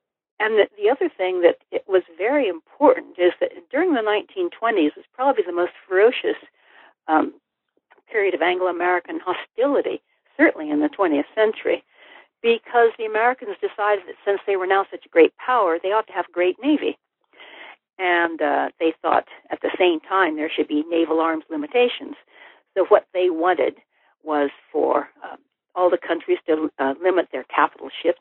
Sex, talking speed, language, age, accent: female, 170 wpm, English, 60-79, American